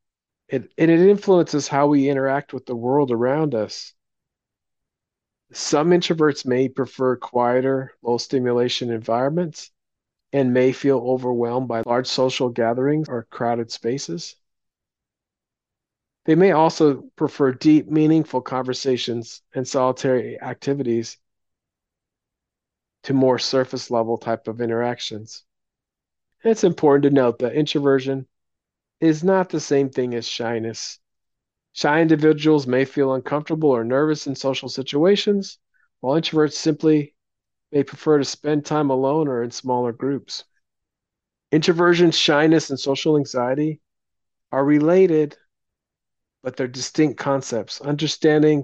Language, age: English, 40-59